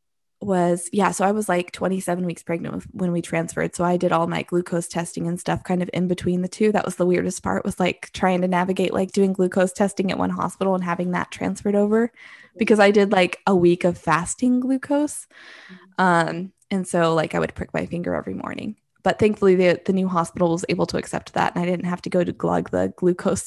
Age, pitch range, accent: 20-39, 180-205 Hz, American